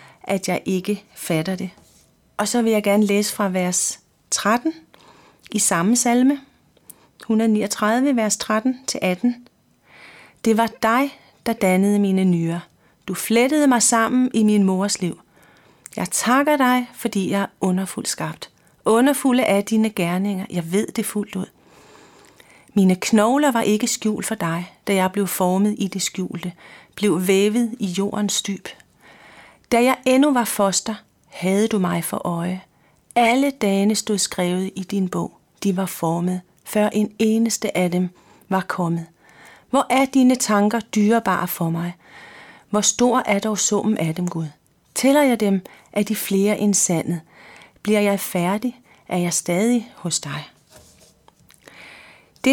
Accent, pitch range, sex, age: native, 185-230 Hz, female, 40-59